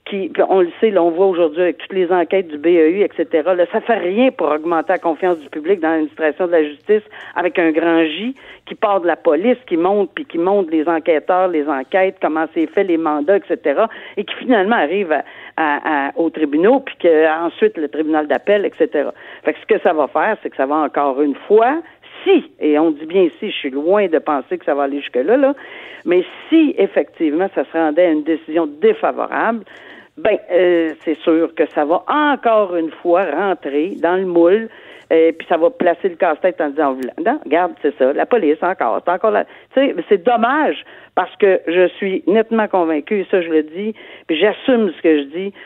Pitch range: 155-210 Hz